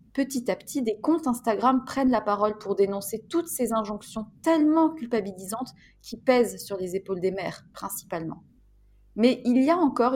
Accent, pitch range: French, 180-230 Hz